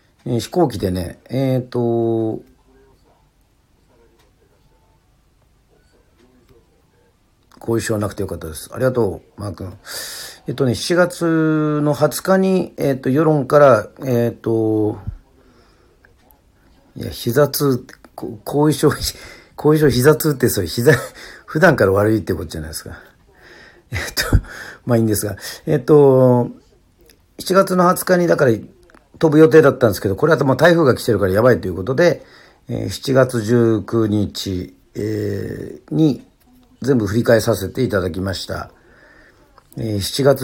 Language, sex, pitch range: Japanese, male, 105-145 Hz